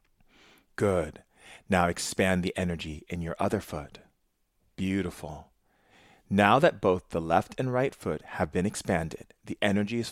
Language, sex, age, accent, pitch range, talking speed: English, male, 40-59, American, 80-100 Hz, 140 wpm